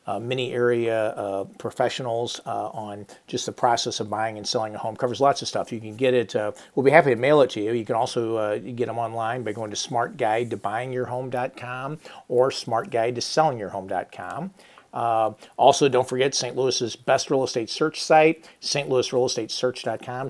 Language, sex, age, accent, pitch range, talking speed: English, male, 50-69, American, 115-130 Hz, 170 wpm